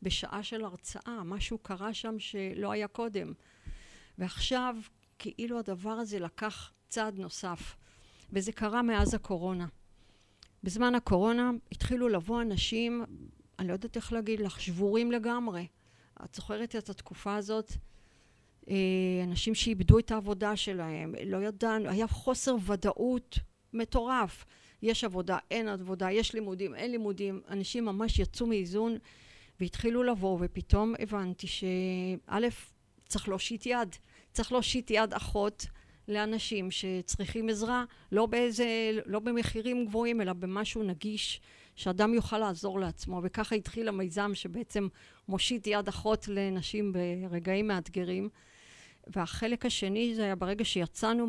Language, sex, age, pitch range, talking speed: Hebrew, female, 50-69, 185-225 Hz, 120 wpm